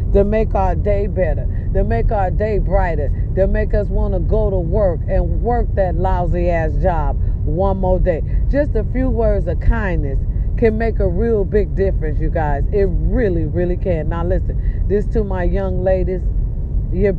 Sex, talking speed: female, 185 wpm